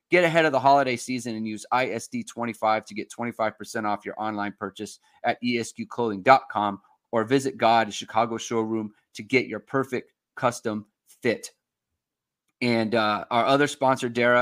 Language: English